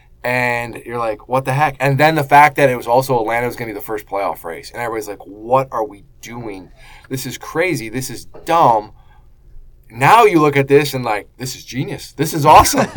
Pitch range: 110-145 Hz